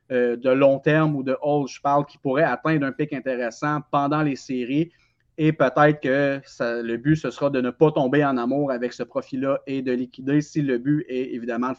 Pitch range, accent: 130-150 Hz, Canadian